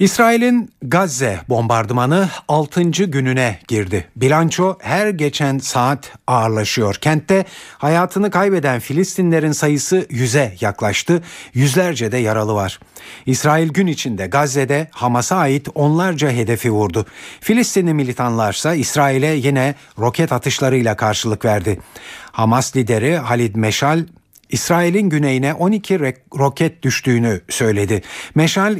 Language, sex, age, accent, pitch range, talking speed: Turkish, male, 50-69, native, 115-165 Hz, 105 wpm